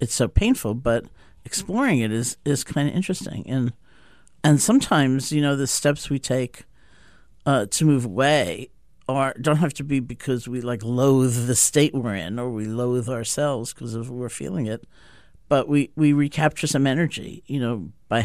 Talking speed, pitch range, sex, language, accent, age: 180 wpm, 120-140 Hz, male, English, American, 50-69